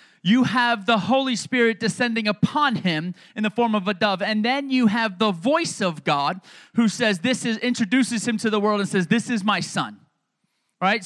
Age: 30-49